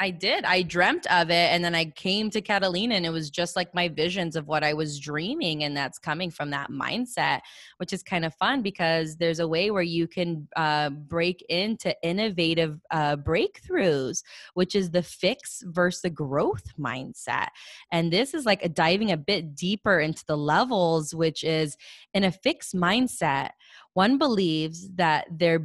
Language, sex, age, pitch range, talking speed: English, female, 20-39, 165-215 Hz, 180 wpm